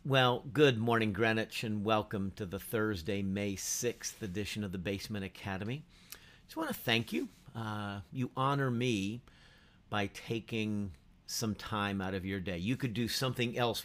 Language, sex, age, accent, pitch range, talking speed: English, male, 50-69, American, 100-120 Hz, 170 wpm